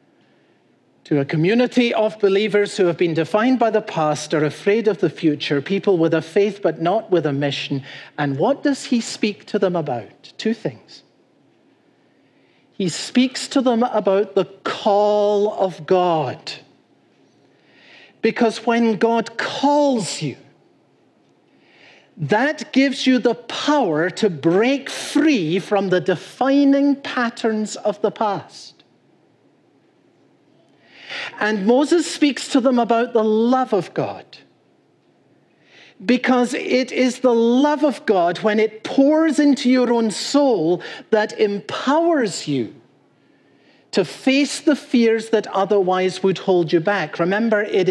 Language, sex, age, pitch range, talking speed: English, male, 50-69, 185-255 Hz, 130 wpm